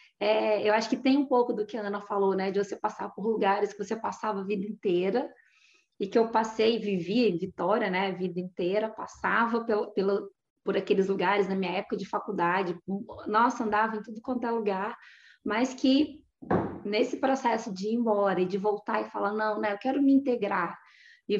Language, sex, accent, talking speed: Portuguese, female, Brazilian, 205 wpm